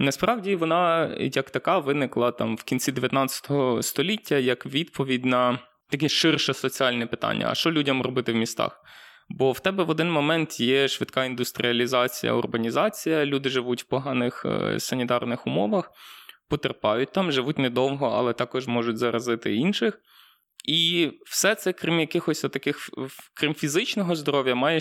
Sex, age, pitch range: male, 20-39, 125-160 Hz